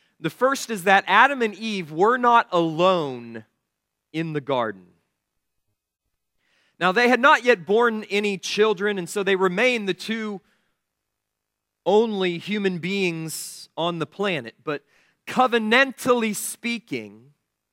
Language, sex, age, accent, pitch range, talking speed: English, male, 40-59, American, 175-235 Hz, 120 wpm